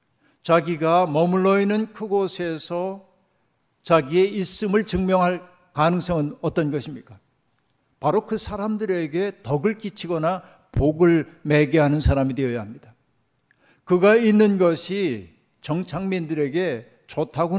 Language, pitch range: Korean, 150-185 Hz